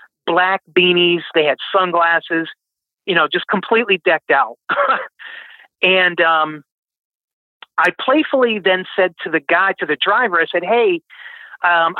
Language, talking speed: English, 135 wpm